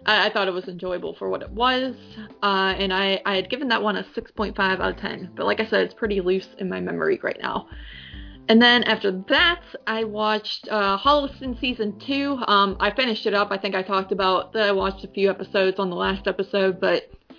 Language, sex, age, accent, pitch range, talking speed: English, female, 20-39, American, 190-230 Hz, 225 wpm